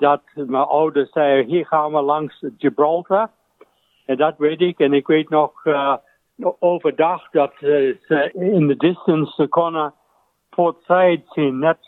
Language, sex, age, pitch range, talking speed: Dutch, male, 60-79, 140-165 Hz, 150 wpm